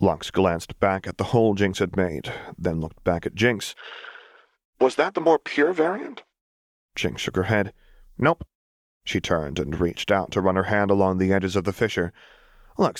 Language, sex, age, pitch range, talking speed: English, male, 30-49, 90-105 Hz, 190 wpm